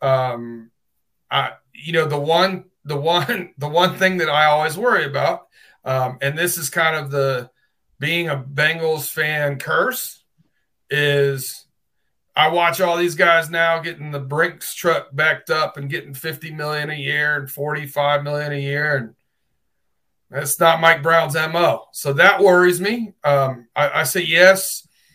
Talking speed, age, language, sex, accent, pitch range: 160 wpm, 40-59, English, male, American, 135-170 Hz